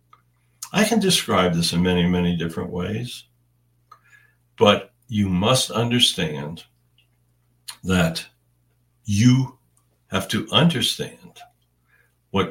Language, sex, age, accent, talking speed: English, male, 60-79, American, 90 wpm